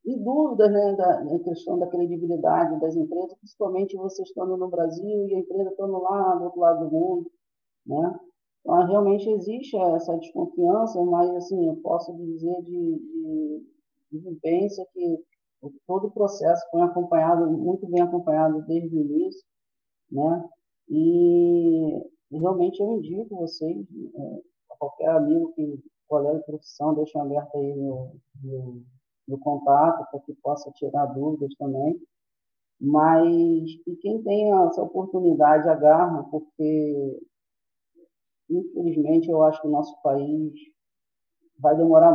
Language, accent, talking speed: Portuguese, Brazilian, 130 wpm